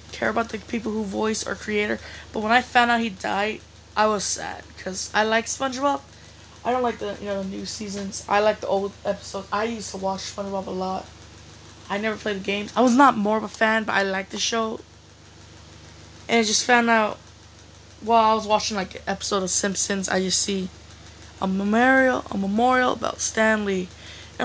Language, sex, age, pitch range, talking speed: English, female, 20-39, 185-225 Hz, 205 wpm